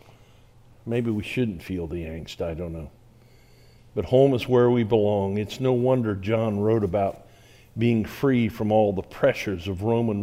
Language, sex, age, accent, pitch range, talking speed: English, male, 50-69, American, 105-120 Hz, 170 wpm